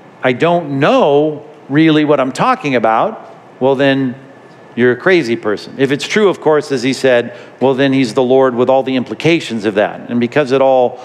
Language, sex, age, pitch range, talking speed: English, male, 50-69, 135-170 Hz, 200 wpm